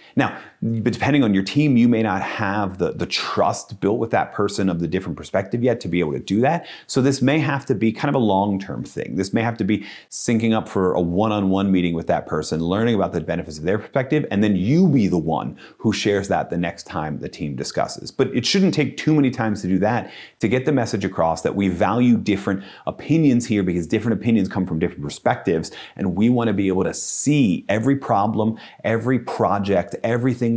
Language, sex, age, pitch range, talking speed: English, male, 30-49, 100-135 Hz, 225 wpm